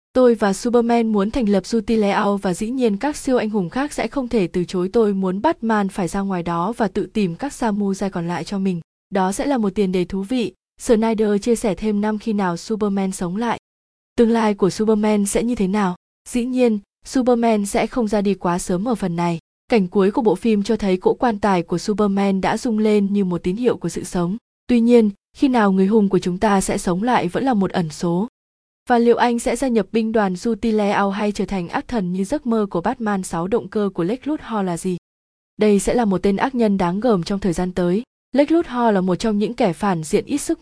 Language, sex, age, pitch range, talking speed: Vietnamese, female, 20-39, 190-230 Hz, 245 wpm